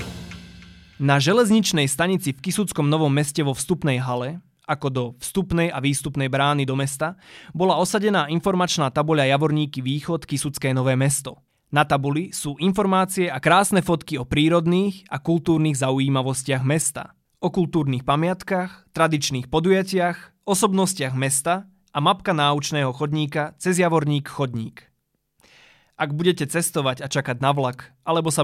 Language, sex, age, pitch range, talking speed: Slovak, male, 20-39, 135-170 Hz, 135 wpm